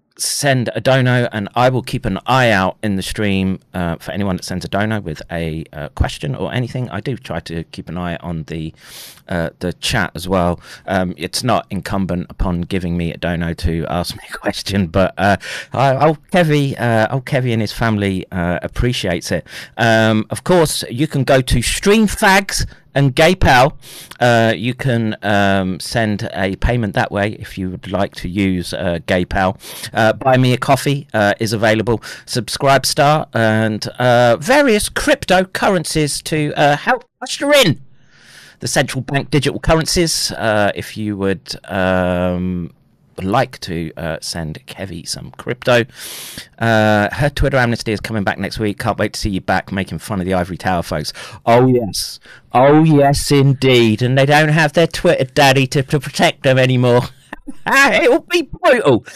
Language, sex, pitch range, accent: English, male, 95-140 Hz, British